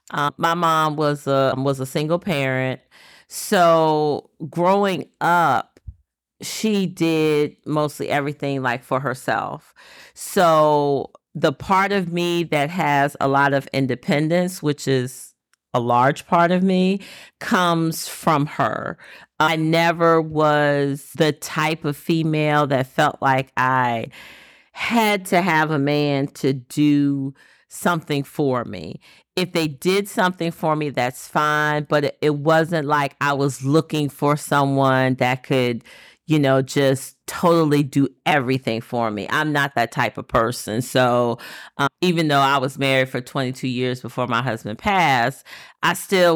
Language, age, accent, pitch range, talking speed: English, 40-59, American, 135-165 Hz, 140 wpm